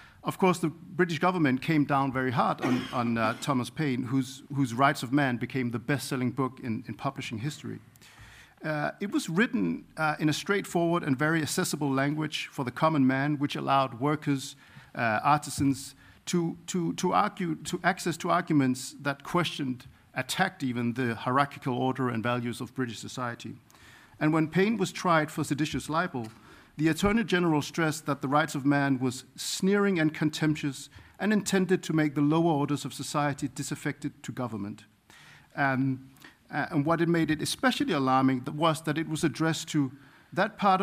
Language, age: English, 50-69